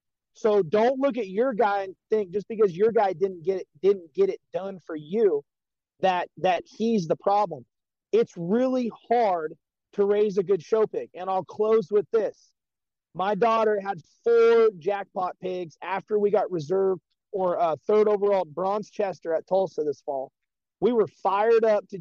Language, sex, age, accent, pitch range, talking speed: English, male, 30-49, American, 200-260 Hz, 175 wpm